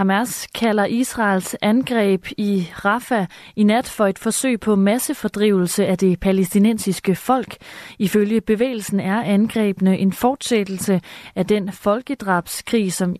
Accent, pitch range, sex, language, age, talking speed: native, 185-230 Hz, female, Danish, 30-49, 125 wpm